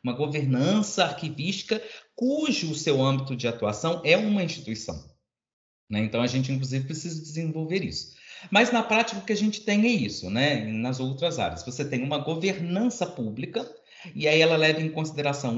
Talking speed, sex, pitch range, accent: 175 wpm, male, 130-185 Hz, Brazilian